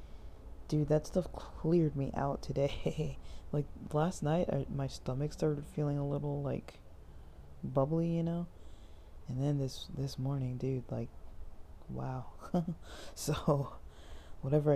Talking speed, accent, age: 120 wpm, American, 20-39